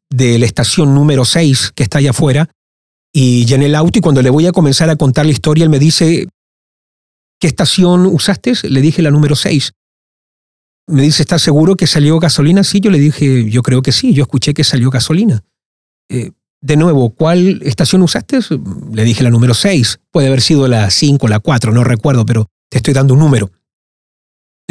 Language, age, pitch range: Spanish, 40-59, 125-165 Hz